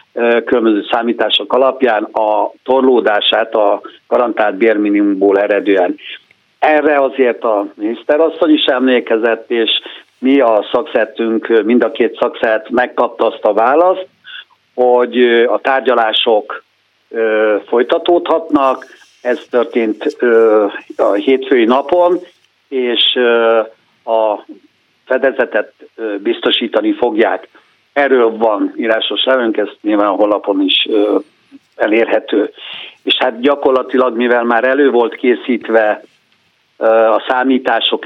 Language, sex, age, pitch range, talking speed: Hungarian, male, 60-79, 115-150 Hz, 100 wpm